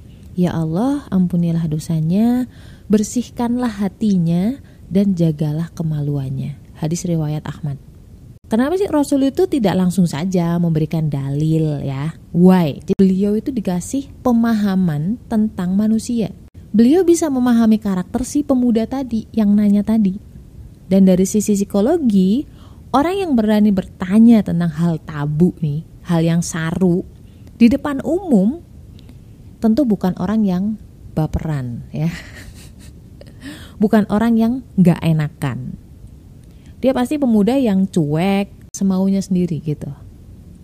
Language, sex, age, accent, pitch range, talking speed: Indonesian, female, 20-39, native, 165-225 Hz, 115 wpm